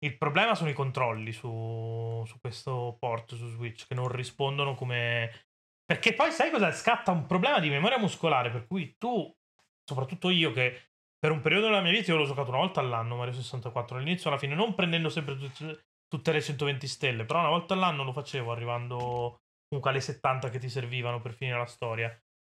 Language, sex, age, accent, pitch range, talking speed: Italian, male, 30-49, native, 125-165 Hz, 195 wpm